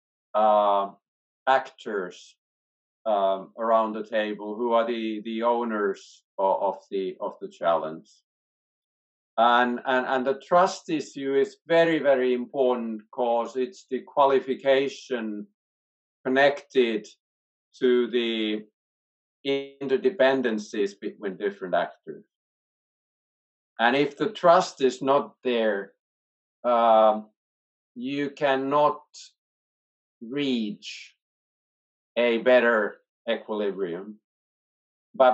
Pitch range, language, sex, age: 110-140 Hz, English, male, 50-69